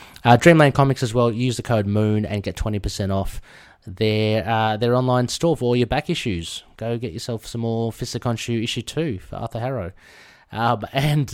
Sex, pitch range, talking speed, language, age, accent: male, 100-125 Hz, 195 wpm, English, 30-49, Australian